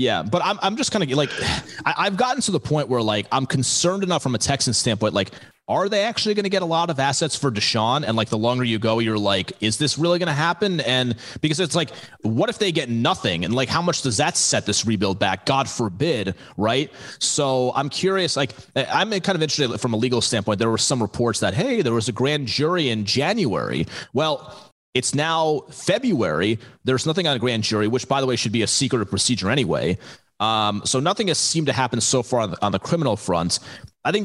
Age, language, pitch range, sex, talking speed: 30-49, English, 110-150 Hz, male, 235 wpm